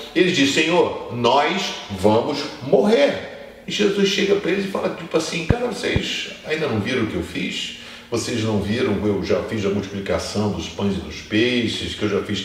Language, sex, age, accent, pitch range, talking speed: Portuguese, male, 50-69, Brazilian, 95-120 Hz, 200 wpm